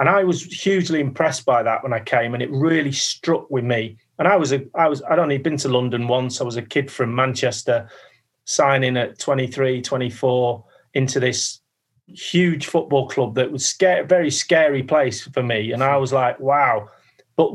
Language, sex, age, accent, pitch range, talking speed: English, male, 30-49, British, 130-155 Hz, 205 wpm